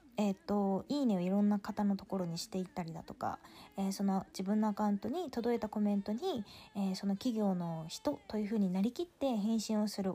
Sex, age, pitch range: female, 20-39, 190-240 Hz